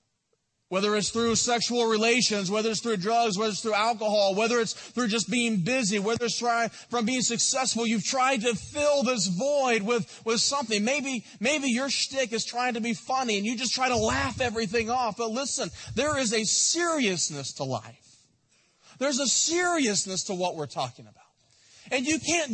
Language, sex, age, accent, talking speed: English, male, 30-49, American, 185 wpm